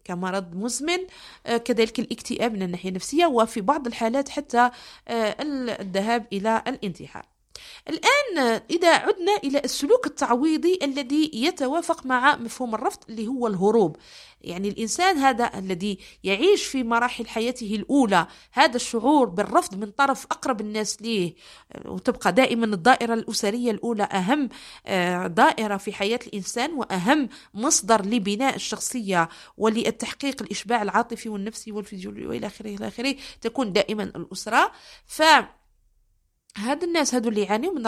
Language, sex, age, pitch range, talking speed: Arabic, female, 40-59, 215-285 Hz, 125 wpm